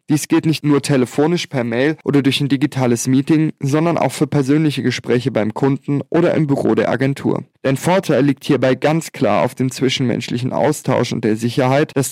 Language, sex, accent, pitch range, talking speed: German, male, German, 120-145 Hz, 190 wpm